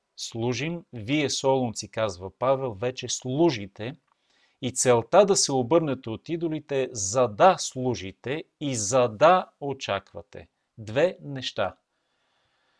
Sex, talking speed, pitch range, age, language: male, 110 wpm, 110-140 Hz, 30-49, Bulgarian